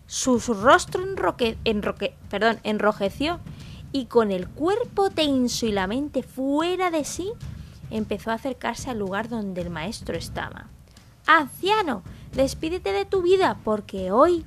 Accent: Spanish